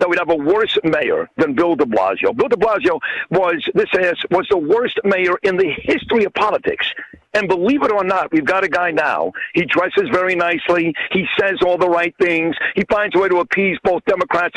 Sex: male